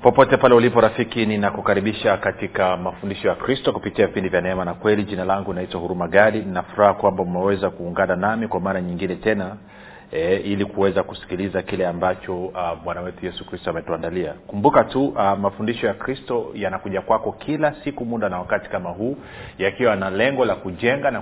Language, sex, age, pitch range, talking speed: Swahili, male, 40-59, 95-115 Hz, 180 wpm